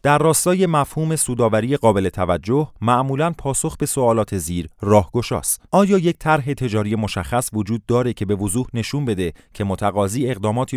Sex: male